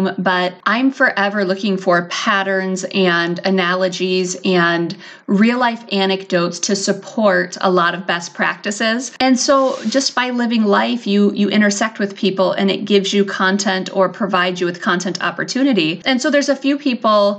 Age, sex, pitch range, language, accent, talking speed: 30-49, female, 185-235 Hz, English, American, 160 wpm